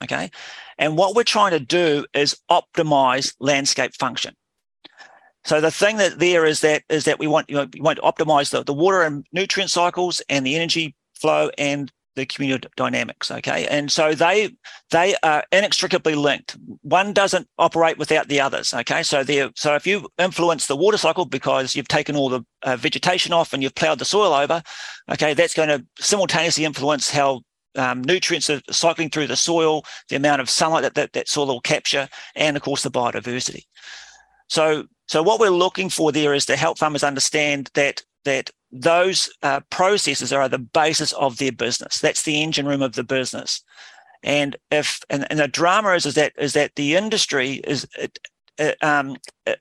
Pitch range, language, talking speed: 140-170 Hz, English, 190 wpm